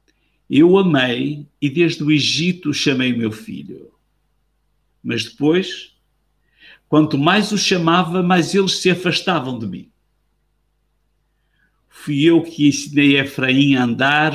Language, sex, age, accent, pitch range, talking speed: Portuguese, male, 50-69, Brazilian, 130-180 Hz, 125 wpm